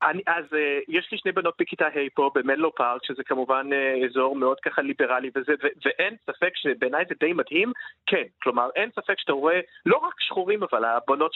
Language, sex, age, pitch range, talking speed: Hebrew, male, 40-59, 155-255 Hz, 210 wpm